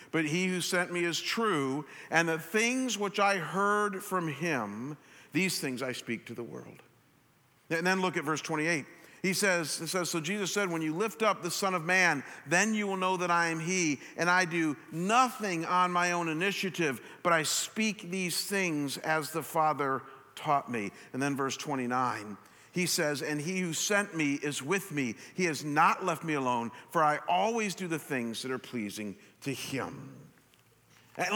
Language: English